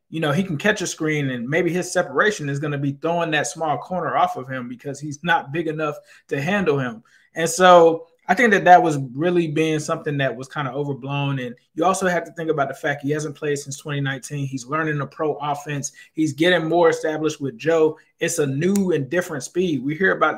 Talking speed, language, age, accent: 235 wpm, English, 20-39, American